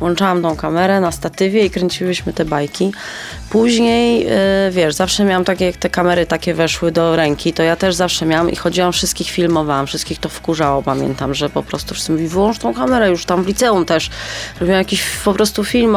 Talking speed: 200 wpm